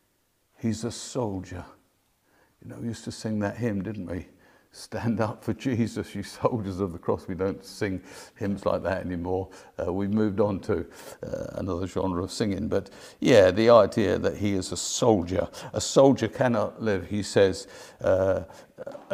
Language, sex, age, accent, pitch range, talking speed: English, male, 50-69, British, 100-120 Hz, 170 wpm